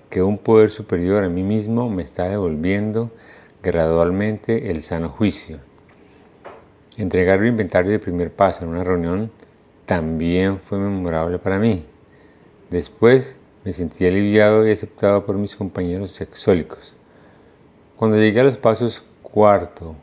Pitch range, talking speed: 90-110 Hz, 130 wpm